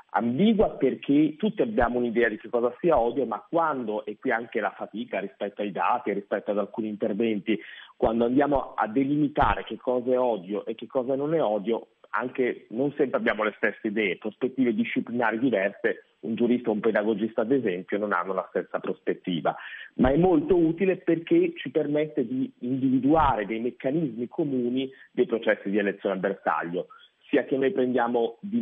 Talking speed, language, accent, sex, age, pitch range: 175 wpm, Italian, native, male, 40-59, 105-140 Hz